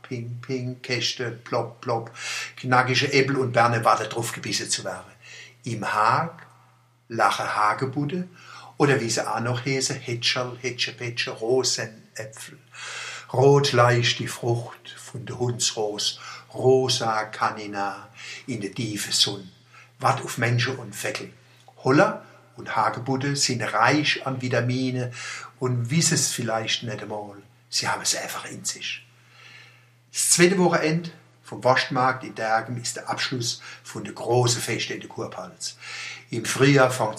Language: German